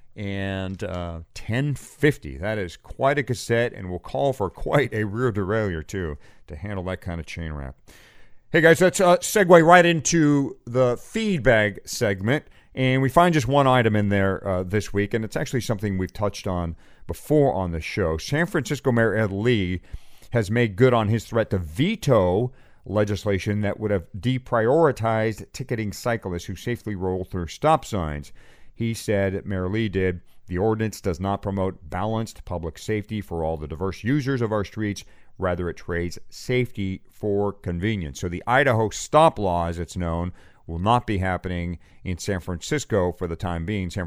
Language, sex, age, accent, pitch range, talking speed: English, male, 40-59, American, 90-125 Hz, 175 wpm